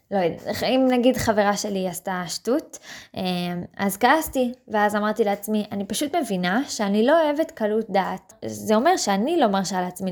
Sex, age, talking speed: female, 20-39, 160 wpm